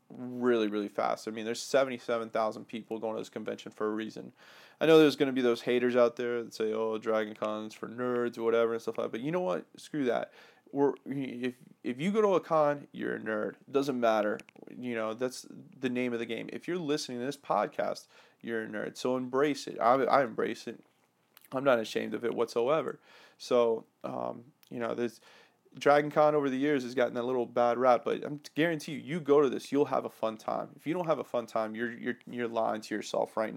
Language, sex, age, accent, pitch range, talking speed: English, male, 20-39, American, 110-130 Hz, 235 wpm